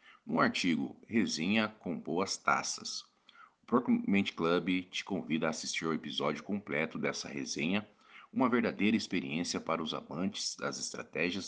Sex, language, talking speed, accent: male, Portuguese, 135 wpm, Brazilian